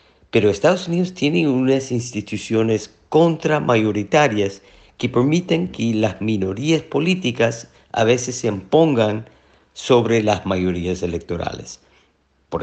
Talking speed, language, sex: 105 wpm, English, male